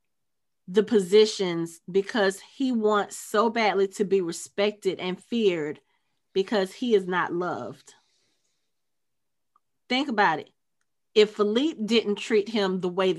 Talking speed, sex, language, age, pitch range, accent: 125 wpm, female, English, 30-49, 185-225 Hz, American